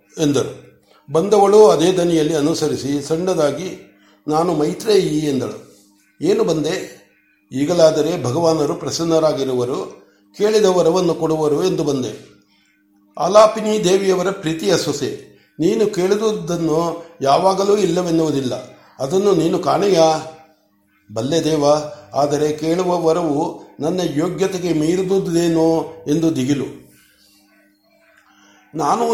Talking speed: 85 wpm